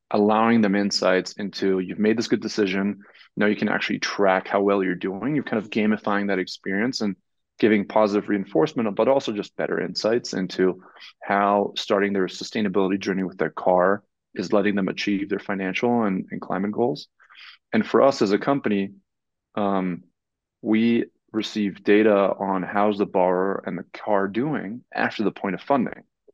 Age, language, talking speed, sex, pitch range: 20-39, English, 170 wpm, male, 100-110 Hz